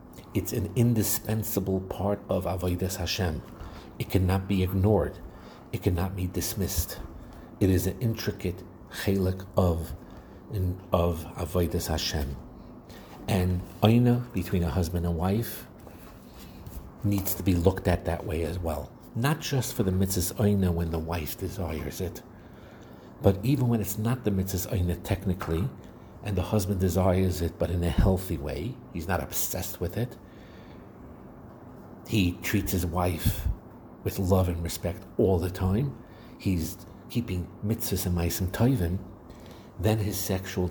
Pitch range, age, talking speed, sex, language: 85-105 Hz, 60-79, 140 wpm, male, English